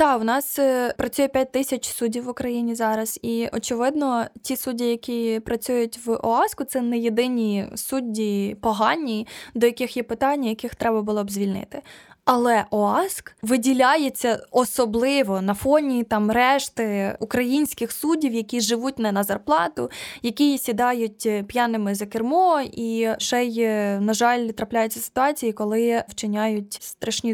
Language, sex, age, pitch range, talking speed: Ukrainian, female, 20-39, 220-255 Hz, 135 wpm